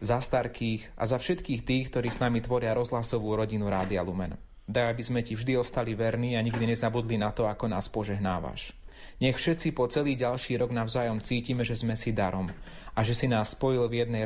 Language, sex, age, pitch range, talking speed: Slovak, male, 30-49, 115-155 Hz, 200 wpm